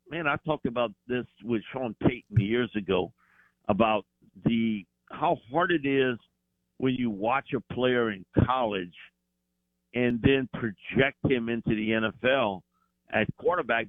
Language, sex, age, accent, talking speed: English, male, 60-79, American, 140 wpm